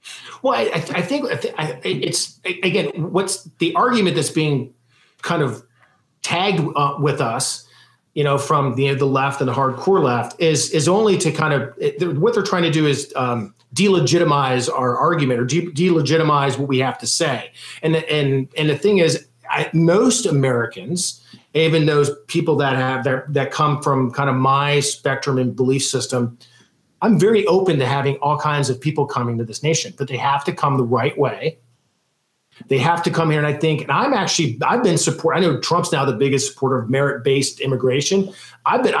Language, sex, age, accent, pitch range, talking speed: English, male, 40-59, American, 135-170 Hz, 200 wpm